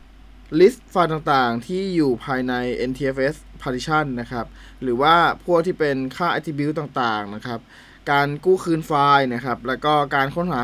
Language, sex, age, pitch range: Thai, male, 20-39, 130-170 Hz